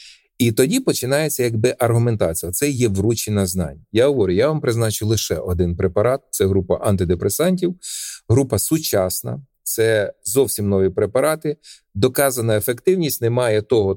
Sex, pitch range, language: male, 105-175 Hz, Ukrainian